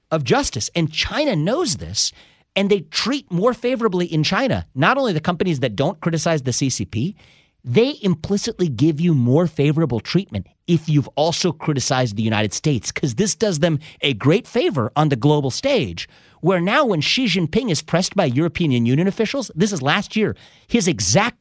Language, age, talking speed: English, 40-59, 180 wpm